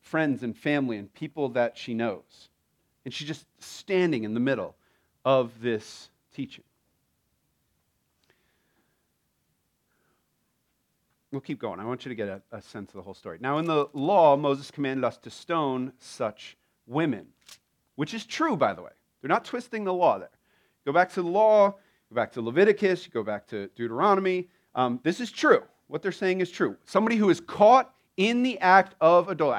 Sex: male